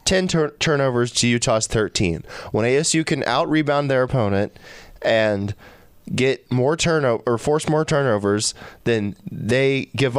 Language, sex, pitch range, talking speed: English, male, 110-130 Hz, 130 wpm